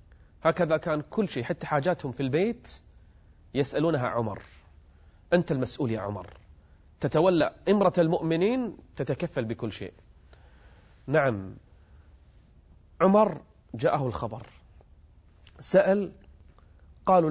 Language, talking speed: Arabic, 90 wpm